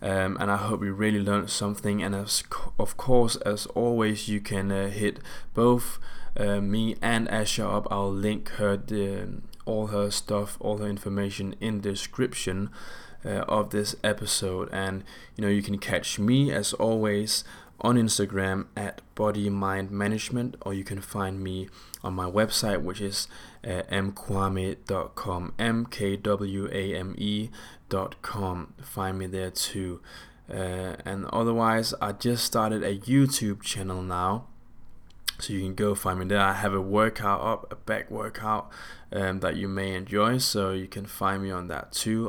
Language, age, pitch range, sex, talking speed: English, 20-39, 95-110 Hz, male, 170 wpm